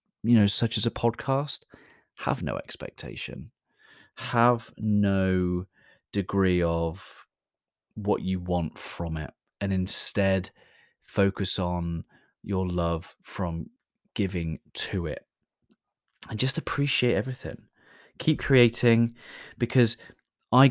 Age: 30-49